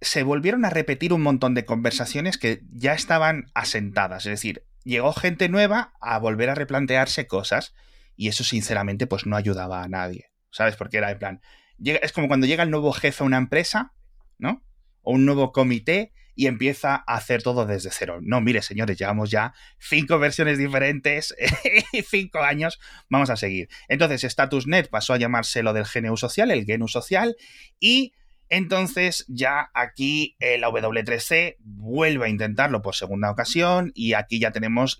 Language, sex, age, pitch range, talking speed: Spanish, male, 30-49, 105-145 Hz, 175 wpm